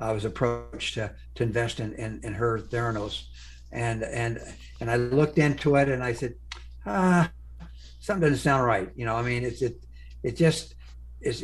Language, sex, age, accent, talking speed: English, male, 60-79, American, 185 wpm